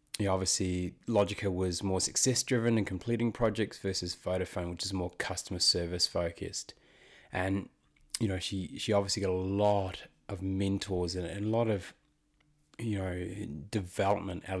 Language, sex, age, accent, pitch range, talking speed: English, male, 20-39, Australian, 90-110 Hz, 150 wpm